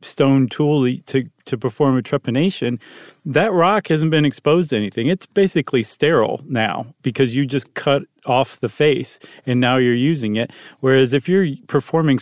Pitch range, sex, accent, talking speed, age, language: 120-150 Hz, male, American, 165 wpm, 40-59, English